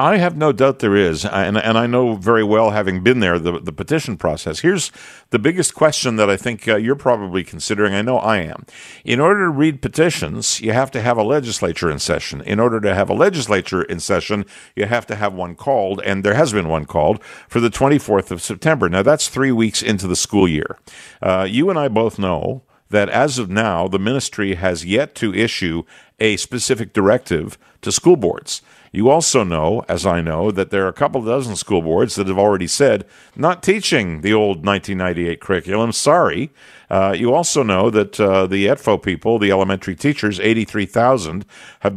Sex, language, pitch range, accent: male, English, 100-130 Hz, American